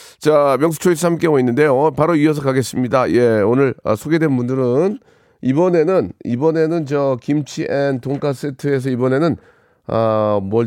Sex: male